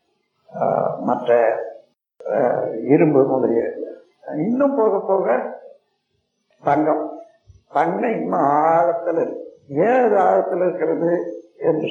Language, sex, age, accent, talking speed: Tamil, male, 50-69, native, 70 wpm